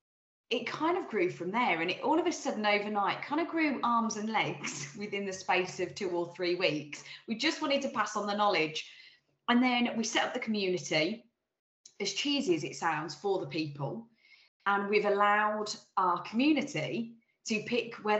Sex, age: female, 20-39